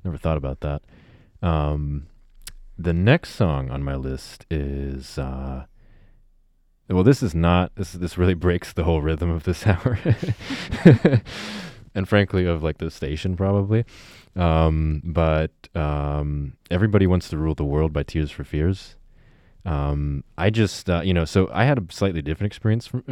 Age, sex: 20-39, male